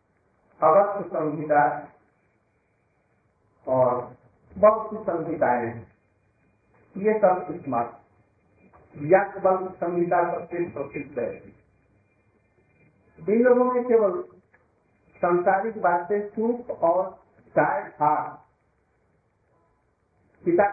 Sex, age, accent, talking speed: male, 50-69, native, 60 wpm